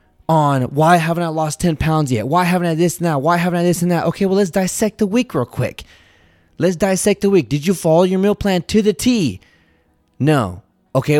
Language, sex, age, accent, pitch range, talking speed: English, male, 20-39, American, 130-180 Hz, 225 wpm